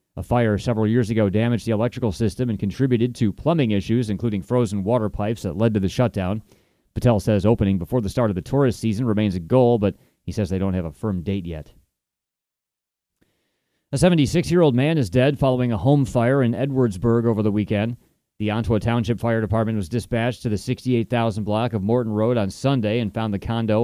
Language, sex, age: English, male, 30-49